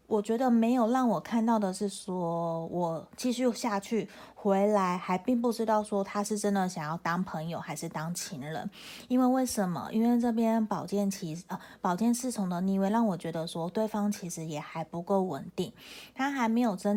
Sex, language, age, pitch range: female, Chinese, 20-39, 170-215 Hz